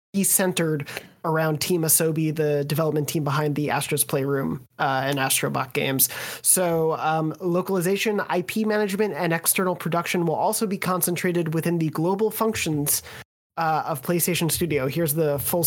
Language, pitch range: English, 150-185 Hz